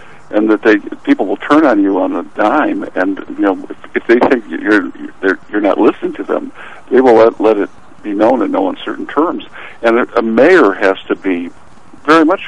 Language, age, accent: English, 60-79, American